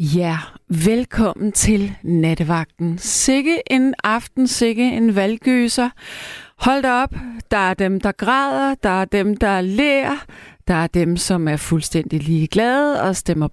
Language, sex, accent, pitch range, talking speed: Danish, female, native, 180-250 Hz, 140 wpm